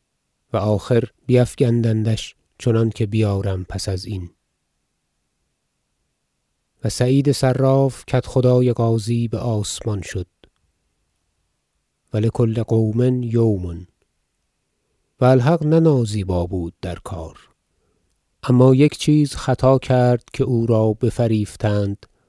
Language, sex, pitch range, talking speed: Persian, male, 100-120 Hz, 100 wpm